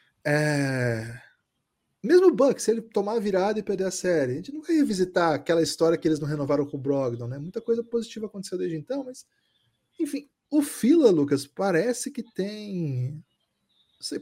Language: Portuguese